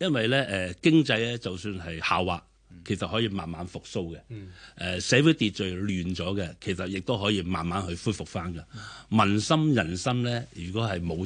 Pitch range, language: 90-115 Hz, Chinese